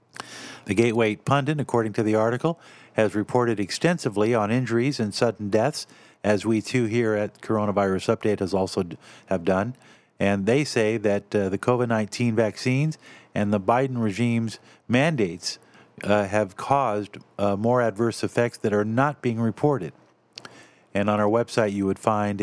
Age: 50-69